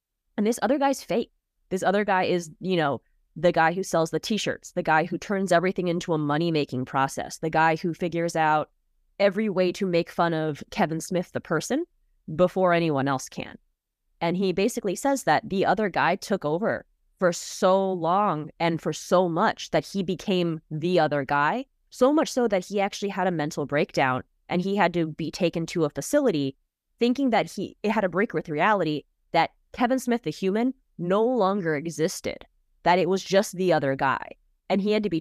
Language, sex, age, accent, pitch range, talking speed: English, female, 20-39, American, 160-205 Hz, 195 wpm